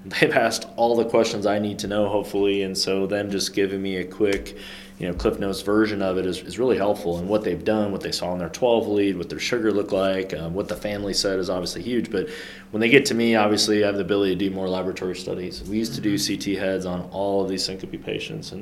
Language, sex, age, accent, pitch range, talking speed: English, male, 20-39, American, 90-100 Hz, 265 wpm